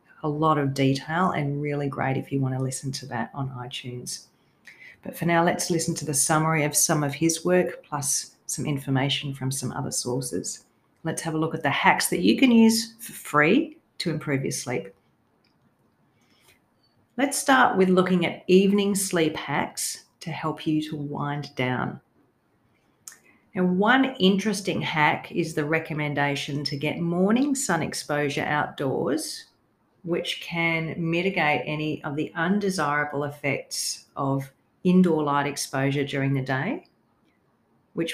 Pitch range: 140-175 Hz